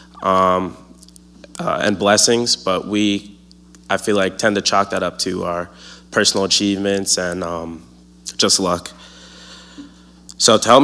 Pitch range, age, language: 85-105 Hz, 20-39, English